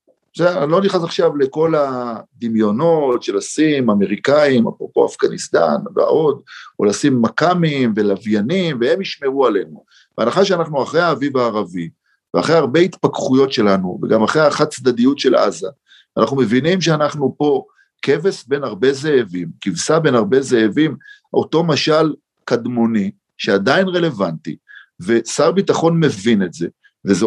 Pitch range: 115-180 Hz